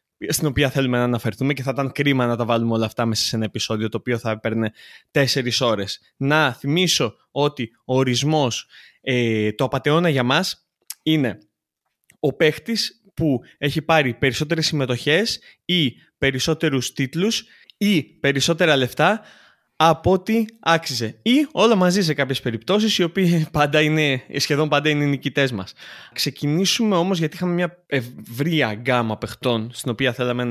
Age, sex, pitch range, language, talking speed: 20-39, male, 120-160 Hz, Greek, 155 wpm